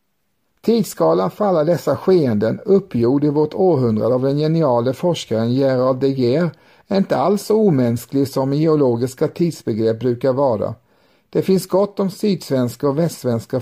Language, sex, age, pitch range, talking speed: Swedish, male, 50-69, 125-180 Hz, 130 wpm